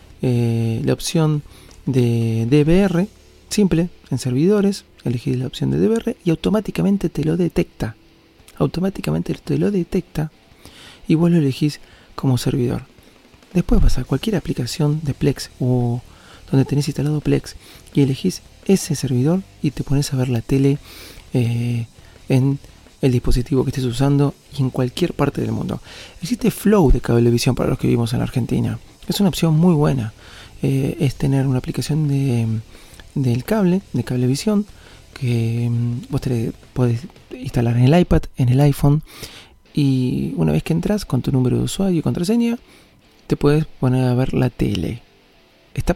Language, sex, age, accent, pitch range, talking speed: Spanish, male, 40-59, Argentinian, 125-165 Hz, 160 wpm